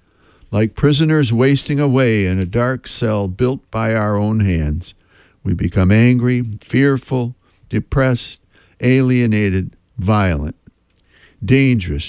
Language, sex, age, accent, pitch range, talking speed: English, male, 60-79, American, 95-130 Hz, 105 wpm